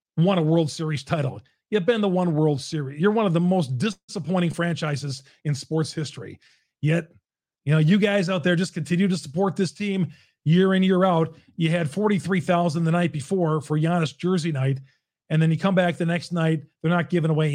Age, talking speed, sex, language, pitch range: 40-59, 205 wpm, male, English, 150-185 Hz